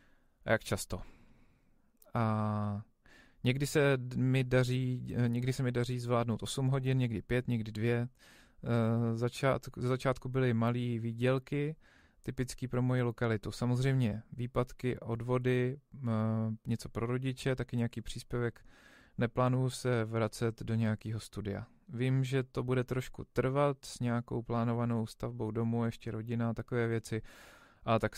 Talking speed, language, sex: 135 wpm, Czech, male